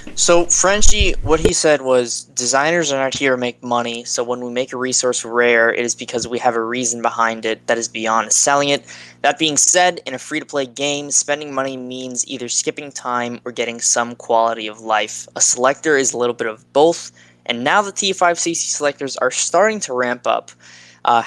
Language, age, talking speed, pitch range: English, 10-29, 205 wpm, 115-145 Hz